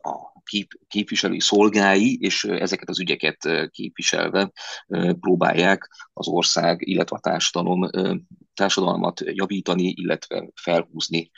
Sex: male